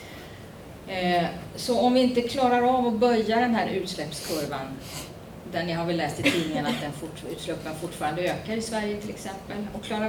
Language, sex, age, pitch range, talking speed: Swedish, female, 30-49, 170-225 Hz, 180 wpm